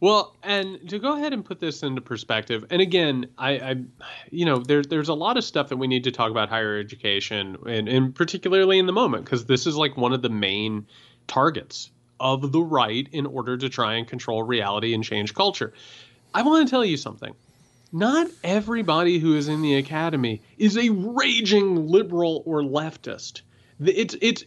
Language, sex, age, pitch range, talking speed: English, male, 30-49, 125-200 Hz, 190 wpm